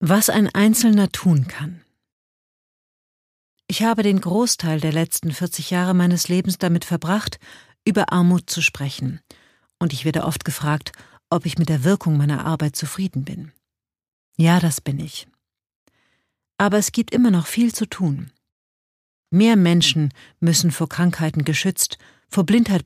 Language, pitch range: German, 150-190 Hz